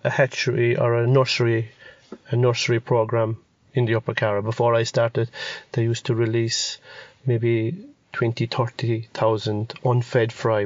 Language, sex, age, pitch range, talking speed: English, male, 30-49, 115-130 Hz, 145 wpm